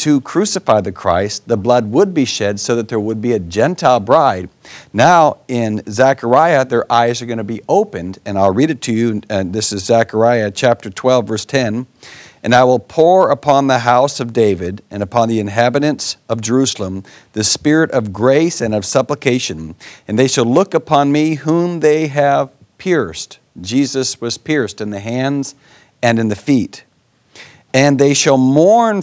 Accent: American